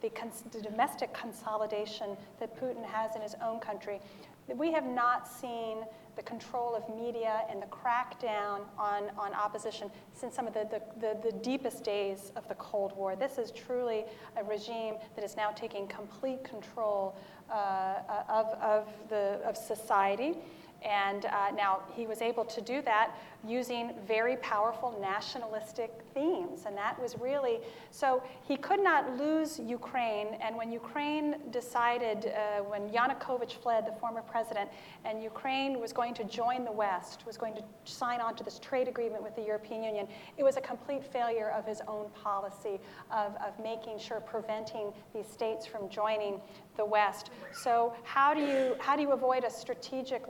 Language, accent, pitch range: English, American, 210-245 Hz